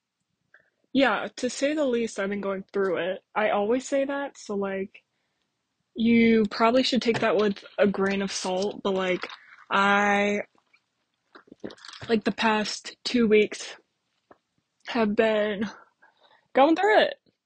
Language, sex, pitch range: English, female, 200-230 Hz